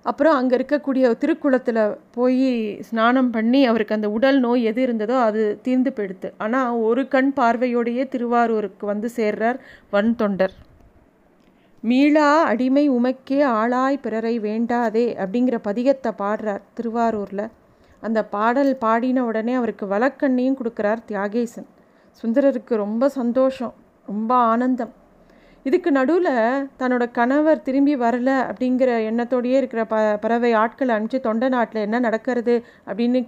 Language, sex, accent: Tamil, female, native